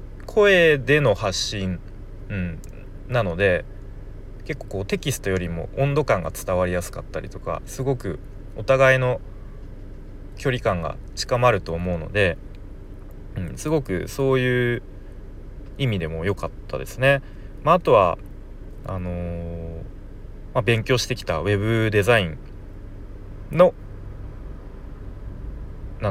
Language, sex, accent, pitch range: Japanese, male, native, 95-125 Hz